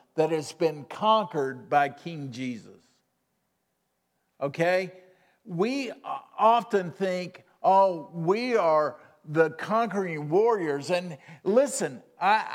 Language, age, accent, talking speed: English, 50-69, American, 95 wpm